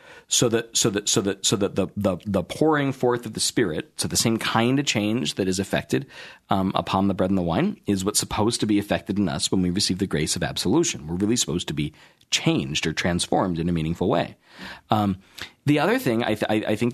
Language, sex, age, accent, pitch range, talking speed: English, male, 40-59, American, 95-120 Hz, 240 wpm